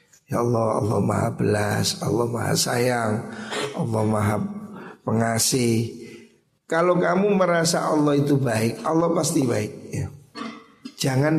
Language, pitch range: Indonesian, 120-165 Hz